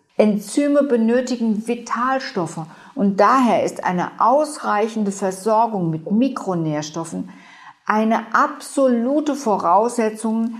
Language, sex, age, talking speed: German, female, 50-69, 80 wpm